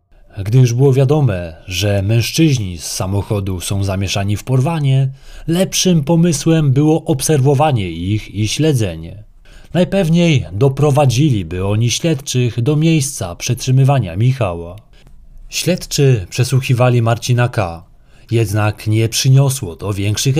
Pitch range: 105-140 Hz